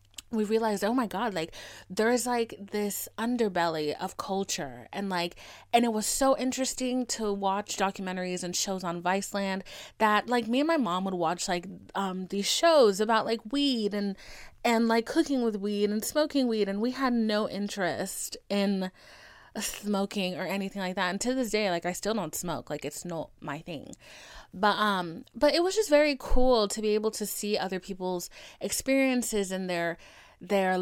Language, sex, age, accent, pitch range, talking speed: English, female, 20-39, American, 180-225 Hz, 185 wpm